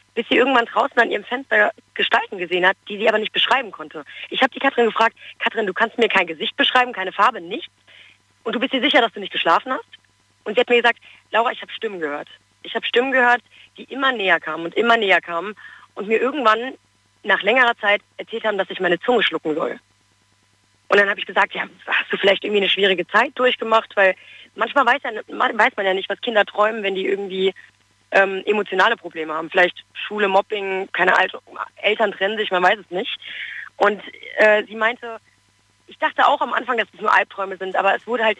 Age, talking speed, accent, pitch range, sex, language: 30-49, 215 wpm, German, 190-235 Hz, female, German